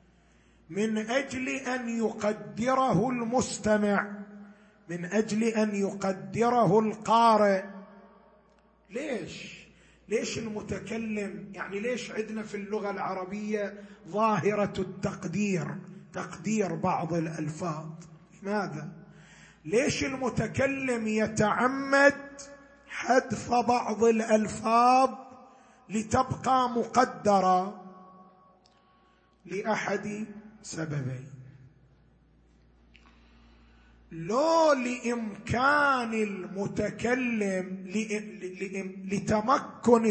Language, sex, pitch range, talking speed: Arabic, male, 190-240 Hz, 60 wpm